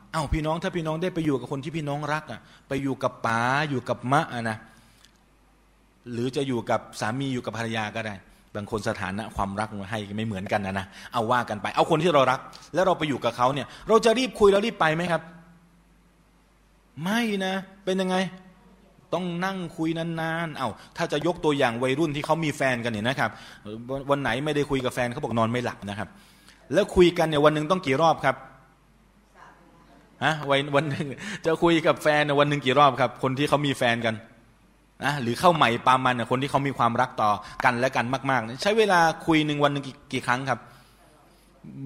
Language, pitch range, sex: Thai, 120-165 Hz, male